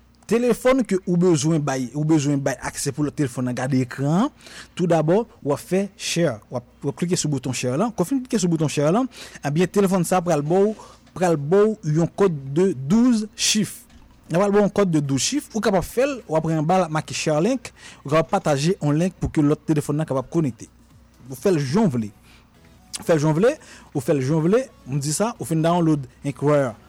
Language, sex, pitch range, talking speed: French, male, 145-195 Hz, 195 wpm